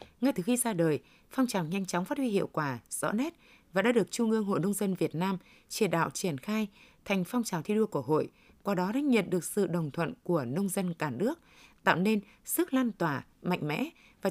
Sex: female